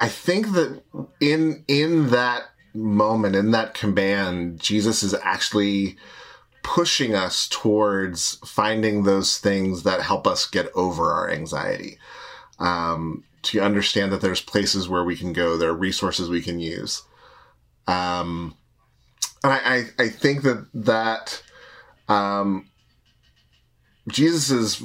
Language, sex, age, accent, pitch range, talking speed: English, male, 30-49, American, 90-110 Hz, 125 wpm